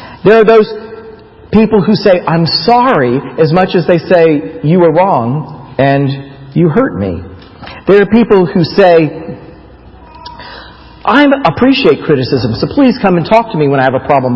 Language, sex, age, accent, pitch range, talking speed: English, male, 50-69, American, 150-210 Hz, 165 wpm